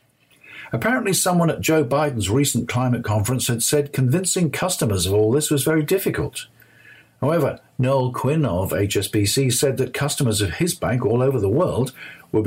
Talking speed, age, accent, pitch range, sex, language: 165 wpm, 50-69, British, 105-145 Hz, male, English